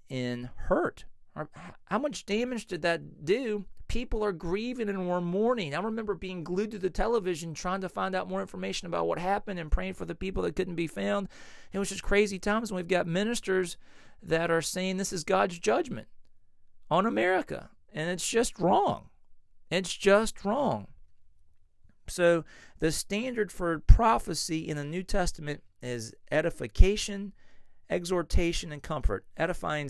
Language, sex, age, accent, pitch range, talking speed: English, male, 40-59, American, 140-190 Hz, 160 wpm